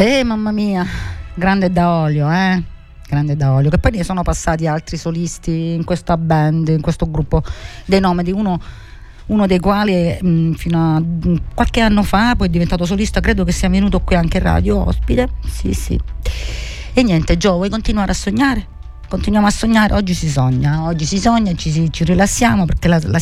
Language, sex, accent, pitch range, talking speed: Italian, female, native, 145-190 Hz, 190 wpm